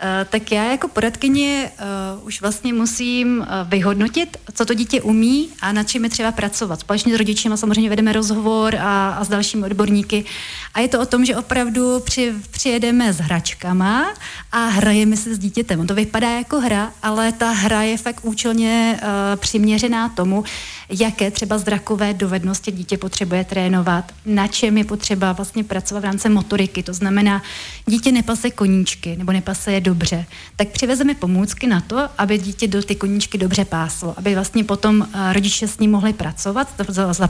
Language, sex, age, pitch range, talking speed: Czech, female, 30-49, 190-220 Hz, 170 wpm